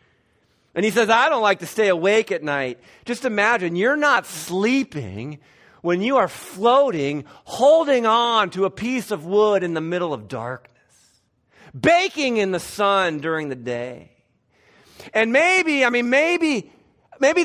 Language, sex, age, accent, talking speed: English, male, 40-59, American, 155 wpm